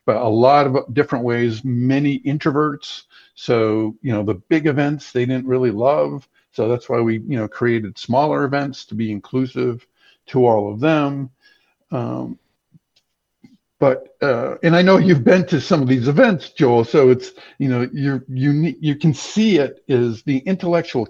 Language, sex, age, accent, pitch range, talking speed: English, male, 50-69, American, 120-145 Hz, 175 wpm